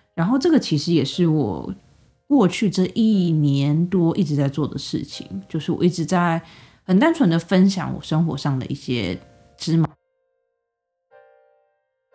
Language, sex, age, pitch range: Chinese, female, 20-39, 150-210 Hz